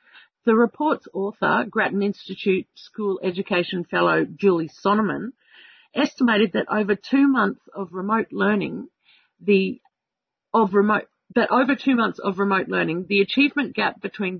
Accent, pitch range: Australian, 190-230 Hz